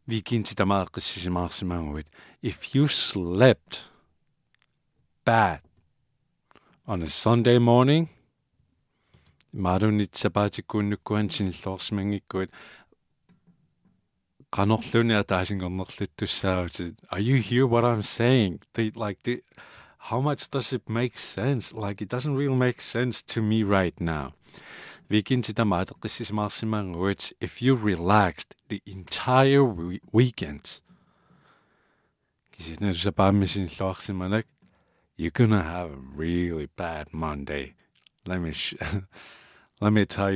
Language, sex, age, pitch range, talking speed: English, male, 50-69, 90-120 Hz, 90 wpm